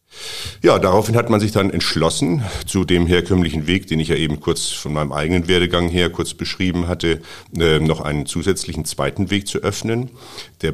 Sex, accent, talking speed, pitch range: male, German, 185 wpm, 80-100 Hz